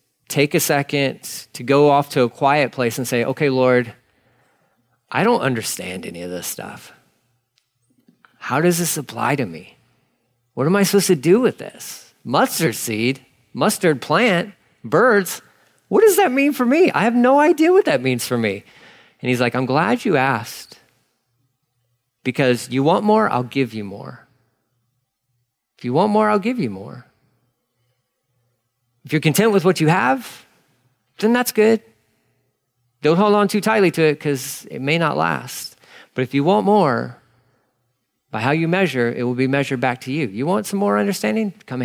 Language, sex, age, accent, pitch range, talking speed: English, male, 40-59, American, 125-175 Hz, 175 wpm